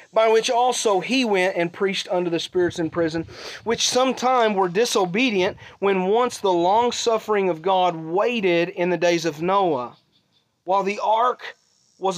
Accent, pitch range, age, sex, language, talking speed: American, 165-225 Hz, 40-59, male, English, 160 wpm